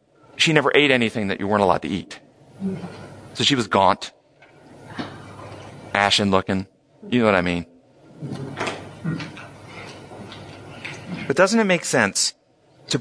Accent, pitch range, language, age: American, 110-145 Hz, English, 40-59